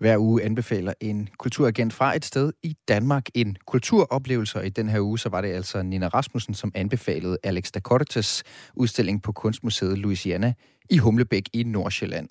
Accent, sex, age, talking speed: native, male, 30-49, 165 wpm